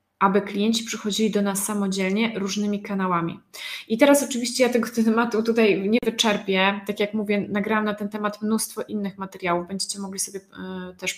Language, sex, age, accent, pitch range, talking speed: Polish, female, 20-39, native, 190-225 Hz, 170 wpm